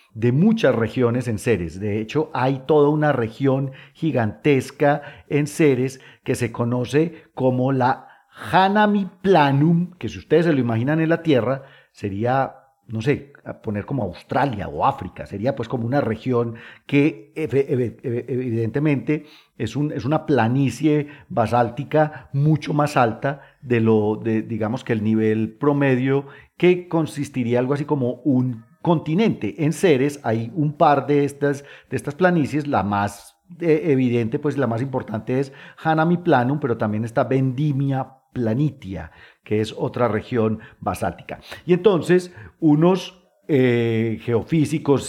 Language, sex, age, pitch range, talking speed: Spanish, male, 40-59, 115-150 Hz, 140 wpm